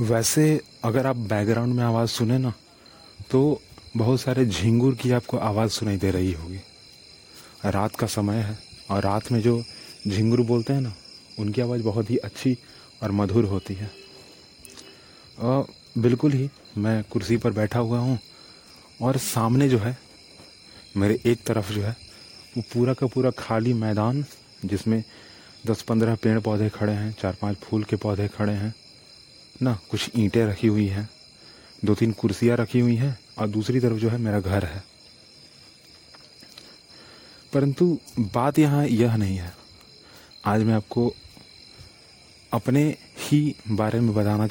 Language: Hindi